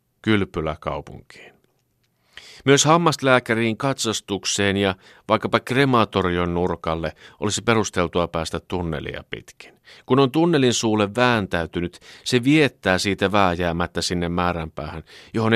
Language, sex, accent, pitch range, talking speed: Finnish, male, native, 85-120 Hz, 95 wpm